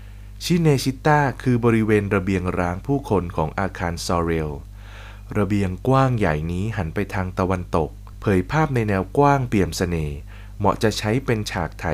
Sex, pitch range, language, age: male, 95-125 Hz, Thai, 20-39